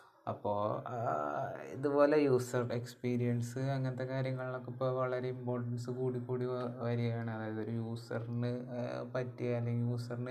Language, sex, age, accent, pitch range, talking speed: Malayalam, male, 20-39, native, 115-130 Hz, 105 wpm